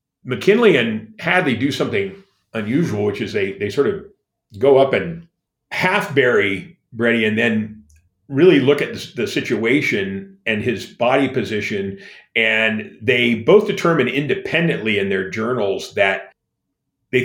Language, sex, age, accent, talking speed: English, male, 50-69, American, 130 wpm